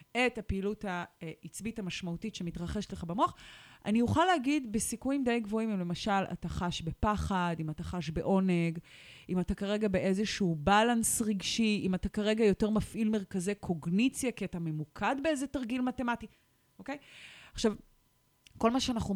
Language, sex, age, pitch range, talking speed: Hebrew, female, 30-49, 185-240 Hz, 145 wpm